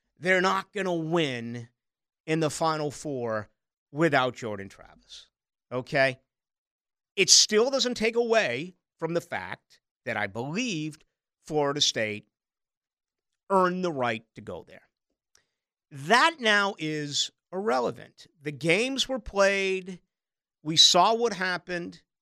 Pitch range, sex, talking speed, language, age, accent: 135-215 Hz, male, 120 wpm, English, 50-69, American